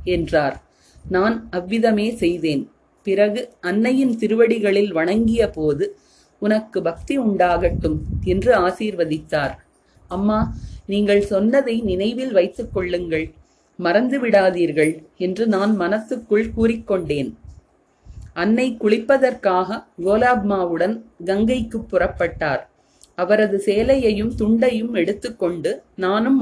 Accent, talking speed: native, 75 wpm